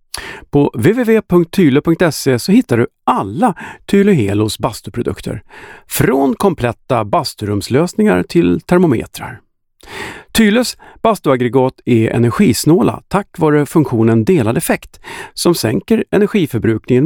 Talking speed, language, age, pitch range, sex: 90 wpm, Swedish, 50-69, 110-175 Hz, male